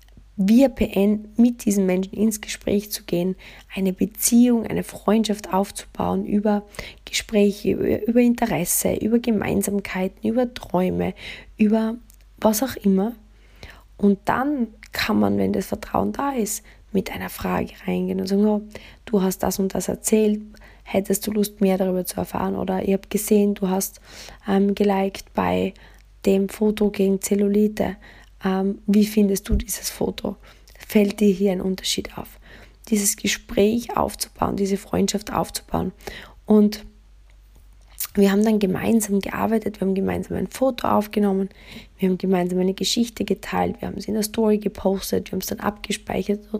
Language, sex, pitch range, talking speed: German, female, 190-215 Hz, 150 wpm